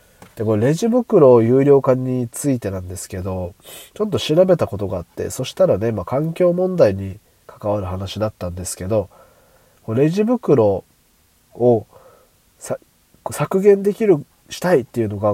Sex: male